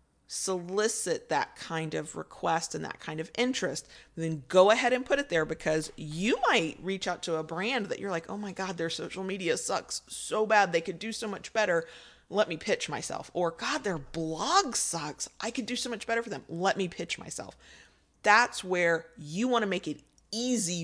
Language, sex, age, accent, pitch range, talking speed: English, female, 30-49, American, 165-215 Hz, 205 wpm